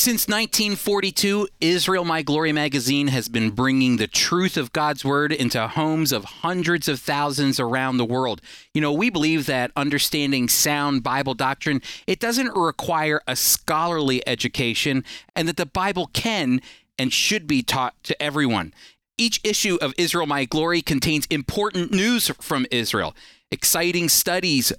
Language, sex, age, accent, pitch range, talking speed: English, male, 40-59, American, 140-190 Hz, 150 wpm